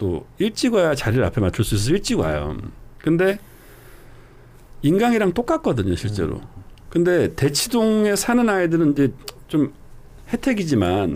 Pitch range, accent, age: 115-185 Hz, native, 40-59